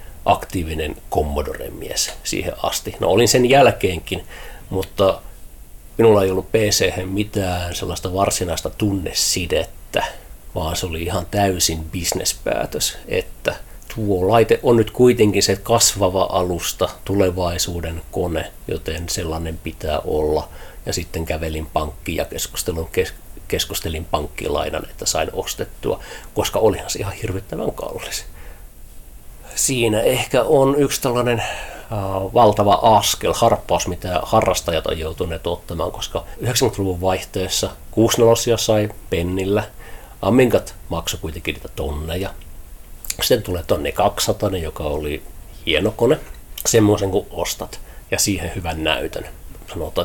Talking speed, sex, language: 115 wpm, male, Finnish